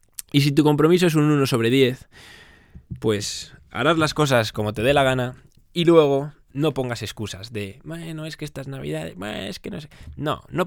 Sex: male